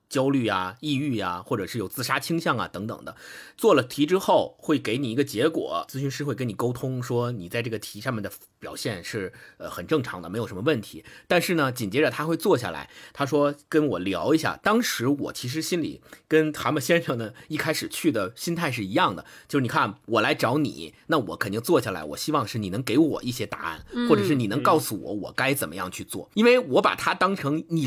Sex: male